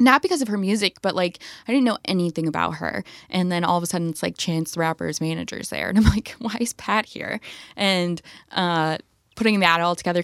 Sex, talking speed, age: female, 230 wpm, 20-39